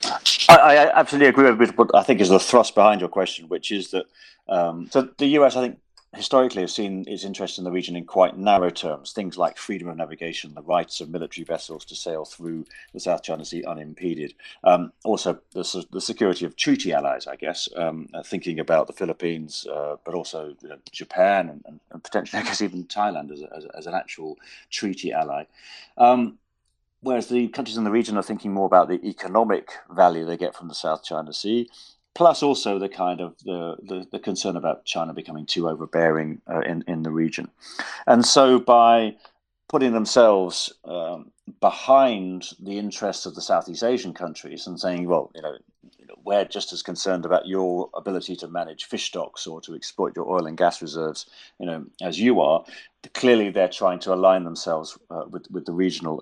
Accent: British